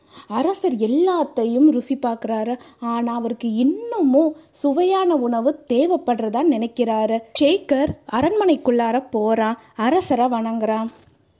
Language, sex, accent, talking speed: Tamil, female, native, 85 wpm